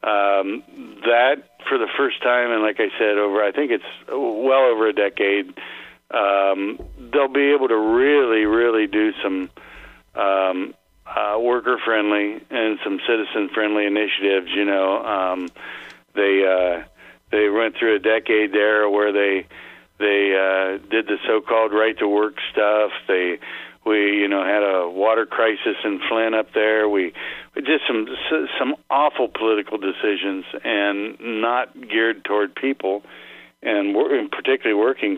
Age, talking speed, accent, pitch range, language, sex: 50-69, 145 wpm, American, 100-110 Hz, English, male